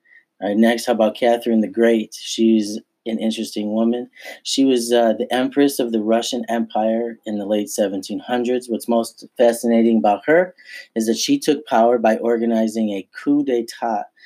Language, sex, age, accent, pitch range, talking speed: English, male, 30-49, American, 110-125 Hz, 170 wpm